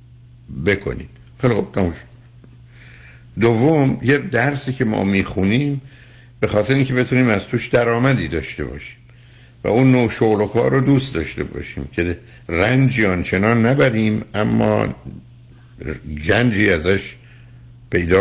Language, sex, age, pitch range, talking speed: Persian, male, 60-79, 95-125 Hz, 115 wpm